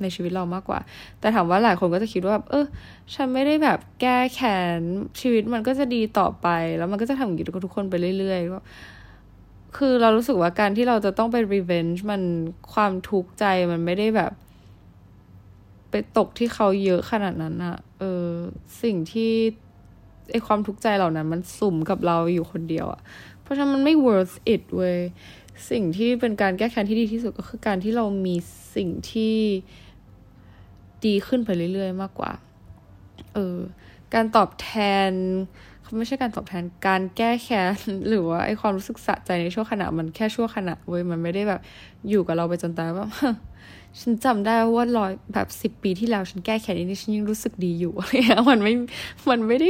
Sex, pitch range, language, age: female, 170-225 Hz, Thai, 20-39